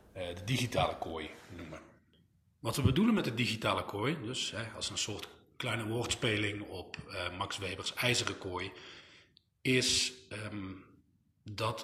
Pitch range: 100-120 Hz